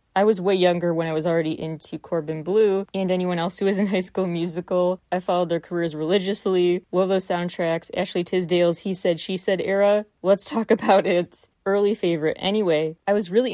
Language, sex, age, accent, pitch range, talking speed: English, female, 20-39, American, 170-200 Hz, 200 wpm